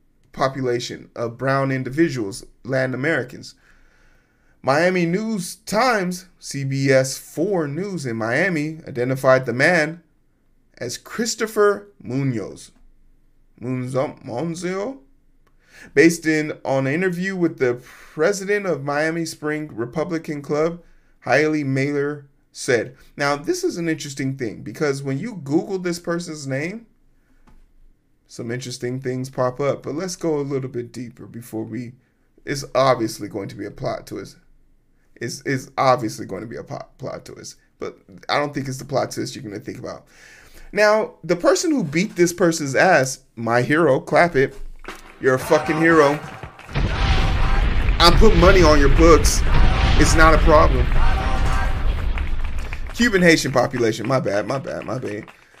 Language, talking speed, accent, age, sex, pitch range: English, 140 wpm, American, 20-39, male, 125-165 Hz